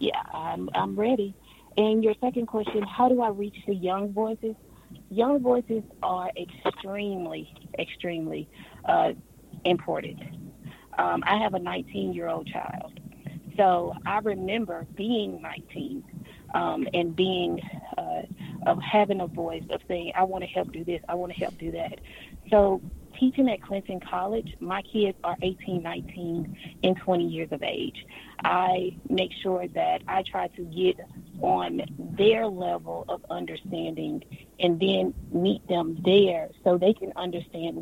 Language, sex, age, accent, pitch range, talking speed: English, female, 30-49, American, 175-205 Hz, 150 wpm